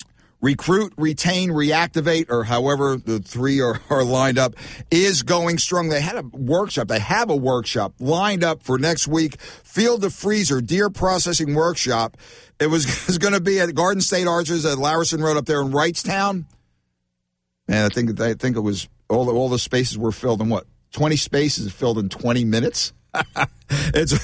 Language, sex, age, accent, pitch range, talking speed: English, male, 60-79, American, 130-180 Hz, 180 wpm